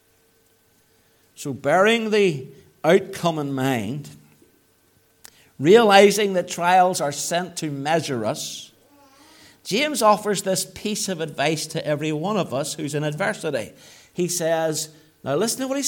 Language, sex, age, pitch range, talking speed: English, male, 60-79, 140-240 Hz, 130 wpm